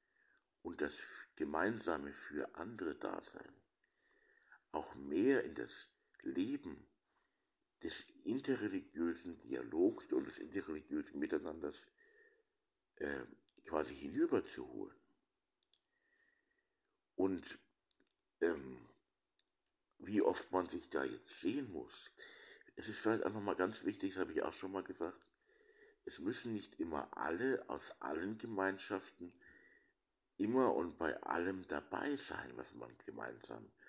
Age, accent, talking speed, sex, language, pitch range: 60-79, German, 110 wpm, male, German, 305-425 Hz